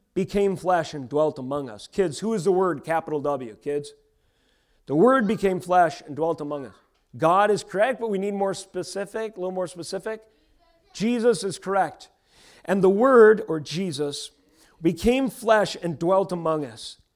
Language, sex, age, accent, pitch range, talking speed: English, male, 40-59, American, 140-200 Hz, 170 wpm